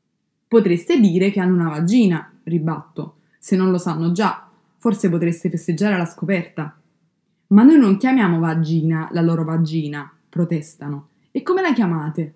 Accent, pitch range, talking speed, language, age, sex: native, 165-200 Hz, 145 wpm, Italian, 20-39, female